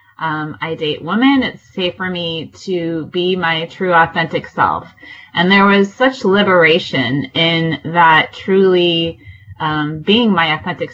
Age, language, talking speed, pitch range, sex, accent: 20-39, English, 145 wpm, 170-205 Hz, female, American